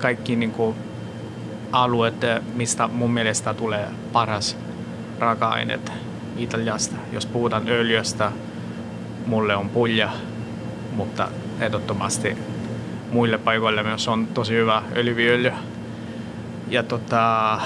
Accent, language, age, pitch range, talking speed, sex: native, Finnish, 20-39, 110-115 Hz, 90 wpm, male